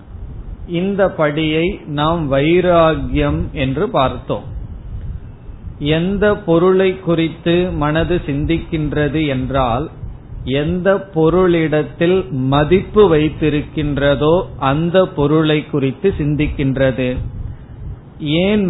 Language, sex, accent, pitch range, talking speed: Tamil, male, native, 135-170 Hz, 65 wpm